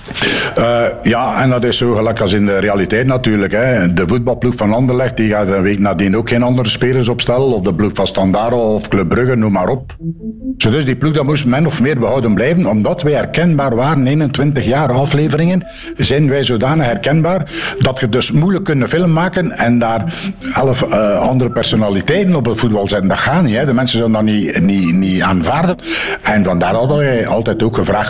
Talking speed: 195 wpm